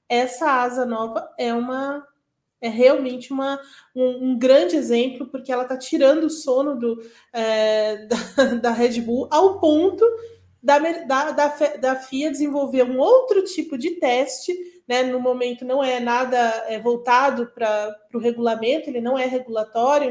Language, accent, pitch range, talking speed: Portuguese, Brazilian, 240-300 Hz, 150 wpm